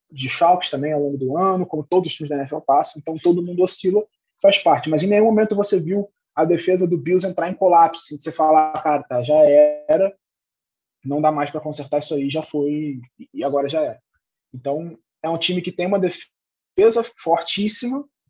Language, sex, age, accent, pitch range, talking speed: Portuguese, male, 20-39, Brazilian, 155-200 Hz, 200 wpm